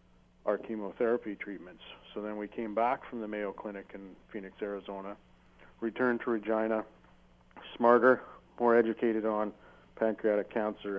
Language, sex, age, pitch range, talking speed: English, male, 40-59, 95-110 Hz, 130 wpm